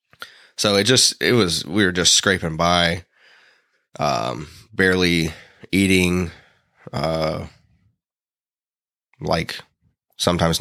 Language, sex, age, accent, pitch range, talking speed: English, male, 20-39, American, 80-90 Hz, 90 wpm